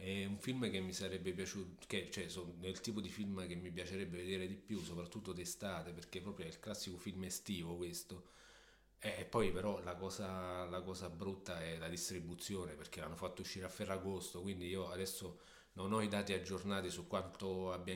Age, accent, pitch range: 30-49, native, 90-100 Hz